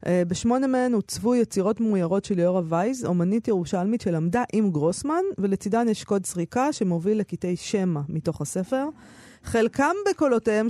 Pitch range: 175-235 Hz